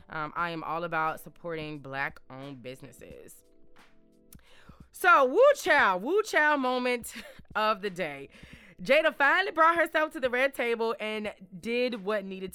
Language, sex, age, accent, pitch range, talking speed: English, female, 20-39, American, 155-245 Hz, 145 wpm